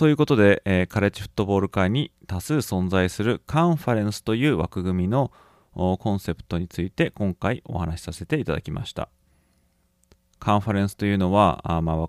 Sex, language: male, Japanese